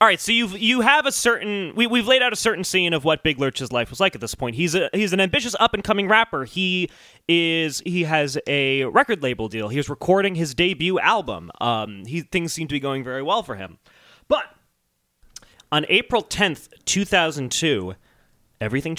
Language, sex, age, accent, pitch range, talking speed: English, male, 20-39, American, 125-180 Hz, 195 wpm